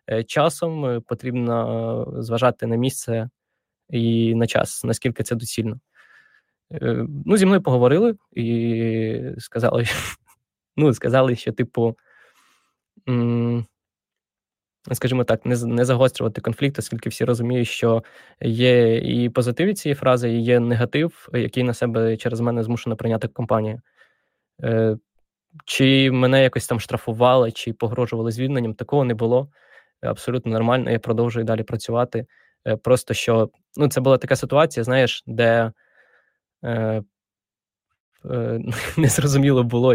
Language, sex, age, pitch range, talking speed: Ukrainian, male, 20-39, 115-130 Hz, 115 wpm